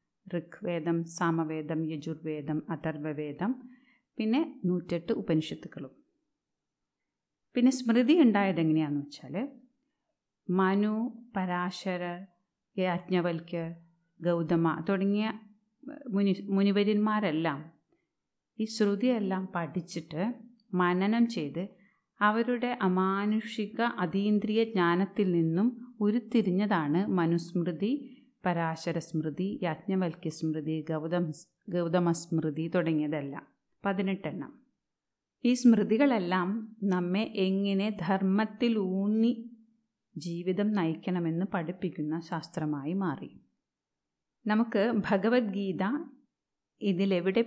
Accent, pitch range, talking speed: native, 170-220 Hz, 65 wpm